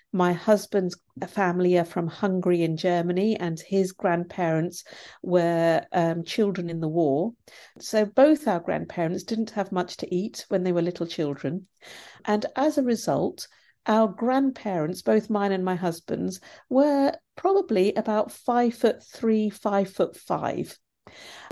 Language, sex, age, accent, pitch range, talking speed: English, female, 50-69, British, 175-230 Hz, 140 wpm